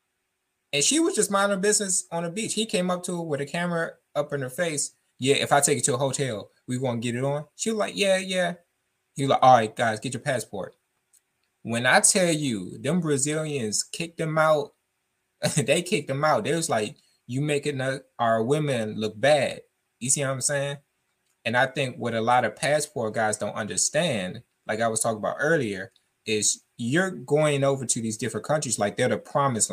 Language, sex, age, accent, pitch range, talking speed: English, male, 20-39, American, 115-150 Hz, 210 wpm